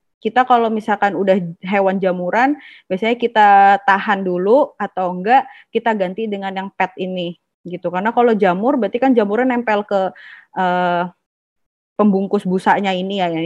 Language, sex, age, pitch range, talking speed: Indonesian, female, 20-39, 185-215 Hz, 145 wpm